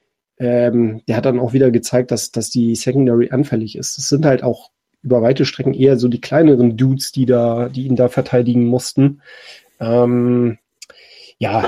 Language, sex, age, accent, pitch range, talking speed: German, male, 30-49, German, 125-165 Hz, 175 wpm